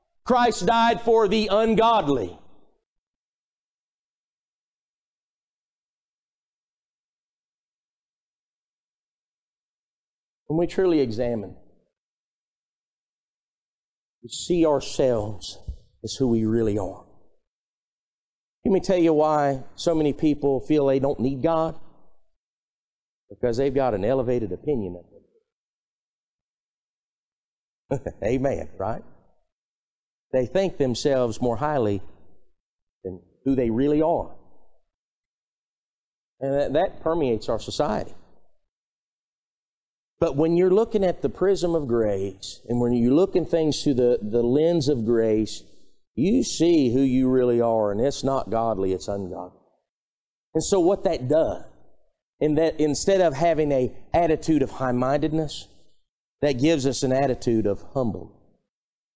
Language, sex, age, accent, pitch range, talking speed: English, male, 50-69, American, 120-165 Hz, 110 wpm